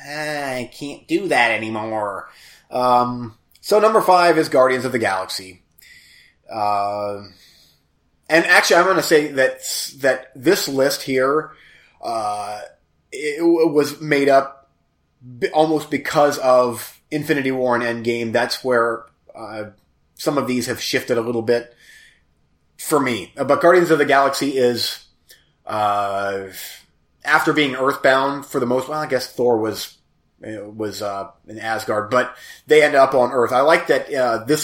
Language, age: English, 30-49